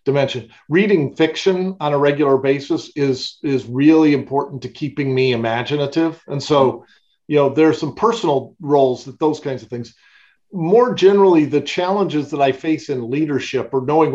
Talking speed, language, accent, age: 170 wpm, English, American, 50-69